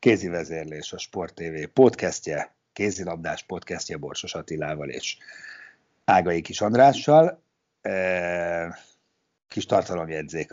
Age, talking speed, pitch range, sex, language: 60-79, 85 wpm, 85-120 Hz, male, Hungarian